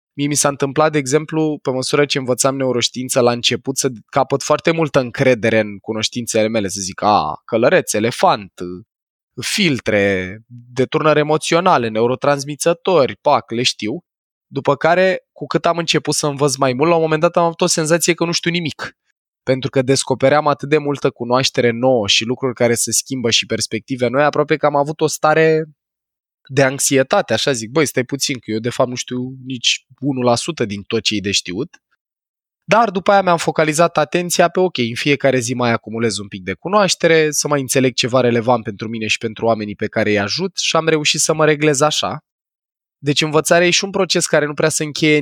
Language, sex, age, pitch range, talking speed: Romanian, male, 20-39, 120-160 Hz, 190 wpm